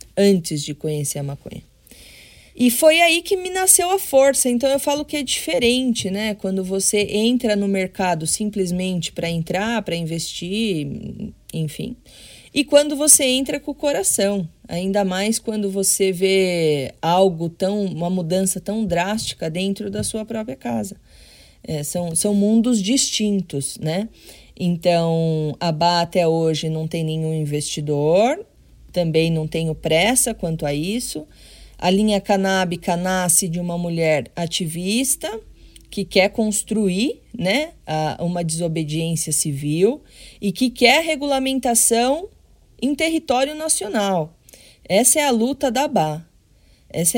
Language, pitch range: Portuguese, 165-235 Hz